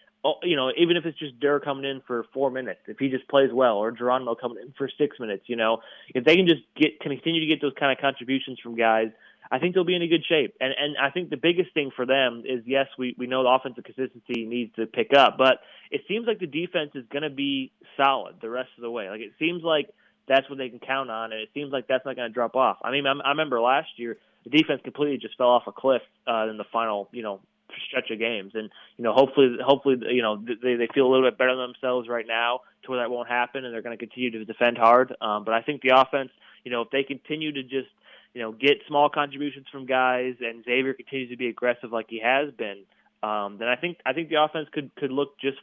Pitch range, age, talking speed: 120-140 Hz, 20-39, 265 wpm